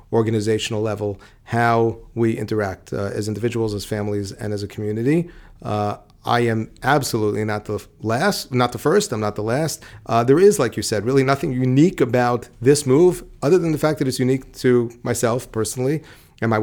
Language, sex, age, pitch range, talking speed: English, male, 40-59, 110-130 Hz, 190 wpm